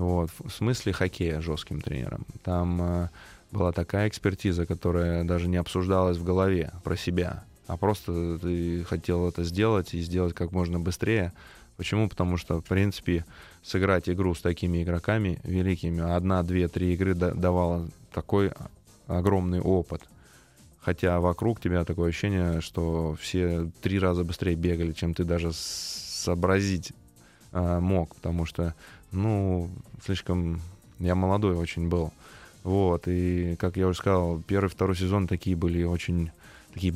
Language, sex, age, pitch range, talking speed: Russian, male, 20-39, 85-95 Hz, 140 wpm